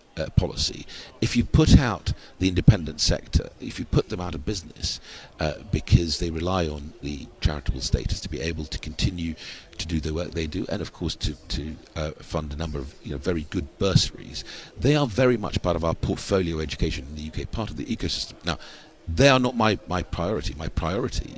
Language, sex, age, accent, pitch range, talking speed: English, male, 50-69, British, 80-95 Hz, 210 wpm